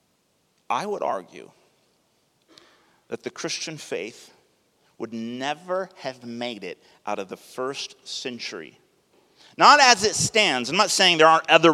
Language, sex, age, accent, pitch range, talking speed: English, male, 40-59, American, 145-200 Hz, 140 wpm